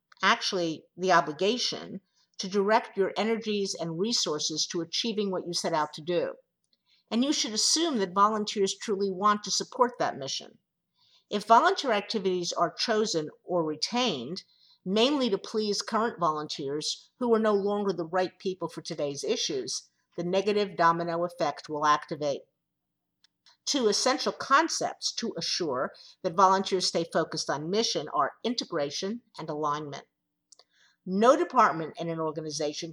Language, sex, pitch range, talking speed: English, female, 165-215 Hz, 140 wpm